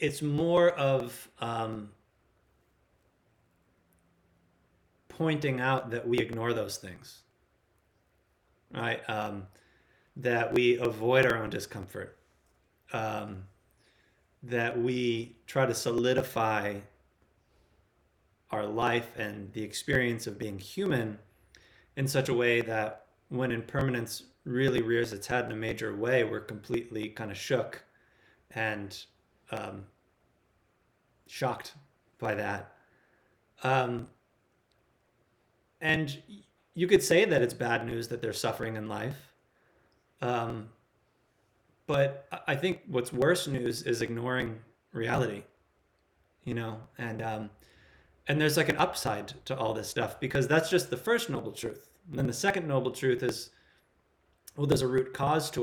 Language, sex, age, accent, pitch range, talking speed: English, male, 30-49, American, 105-130 Hz, 125 wpm